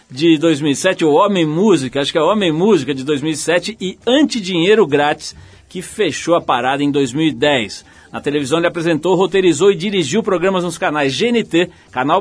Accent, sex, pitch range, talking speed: Brazilian, male, 145-200 Hz, 165 wpm